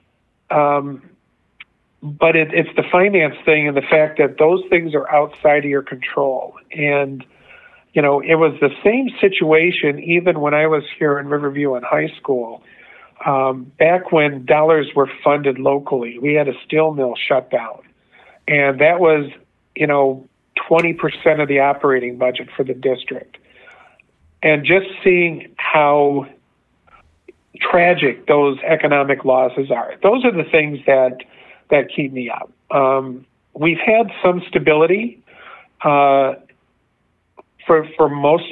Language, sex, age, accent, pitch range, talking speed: English, male, 50-69, American, 140-165 Hz, 140 wpm